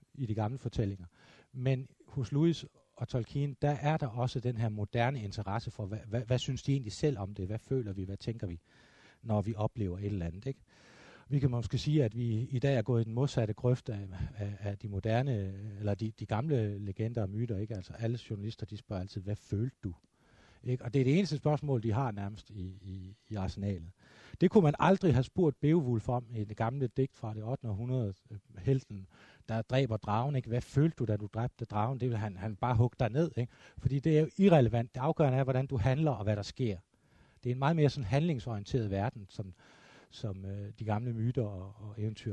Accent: native